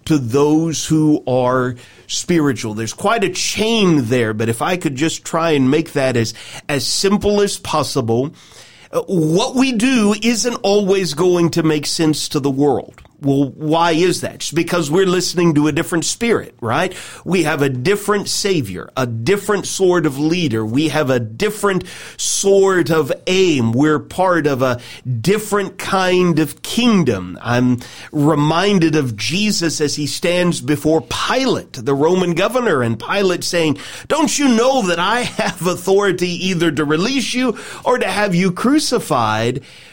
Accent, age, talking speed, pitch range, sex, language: American, 40-59, 160 wpm, 135-200 Hz, male, English